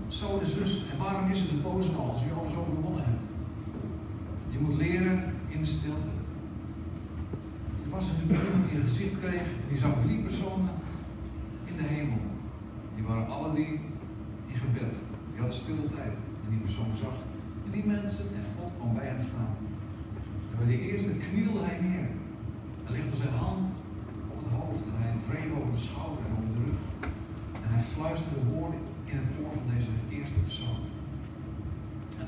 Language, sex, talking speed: Dutch, male, 175 wpm